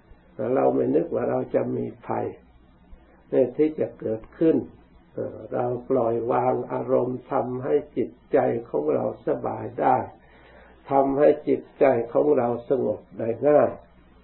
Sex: male